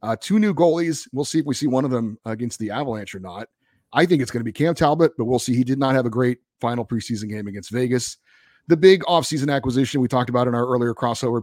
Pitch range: 115-145 Hz